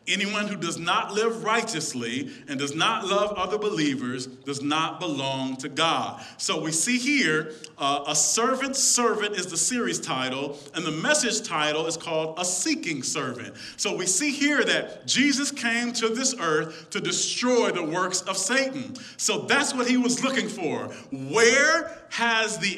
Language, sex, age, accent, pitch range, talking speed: English, male, 40-59, American, 160-240 Hz, 170 wpm